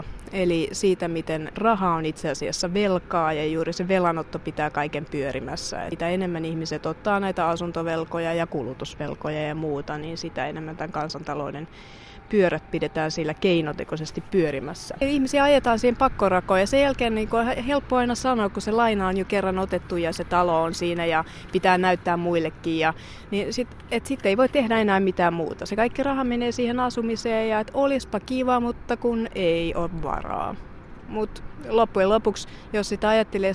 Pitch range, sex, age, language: 160-220 Hz, female, 30-49, Finnish